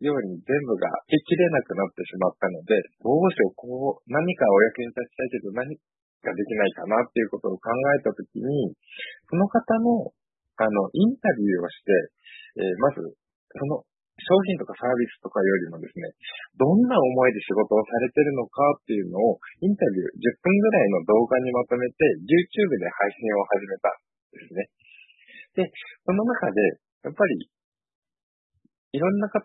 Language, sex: Japanese, male